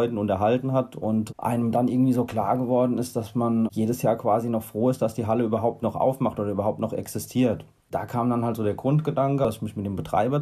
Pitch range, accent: 110-125 Hz, German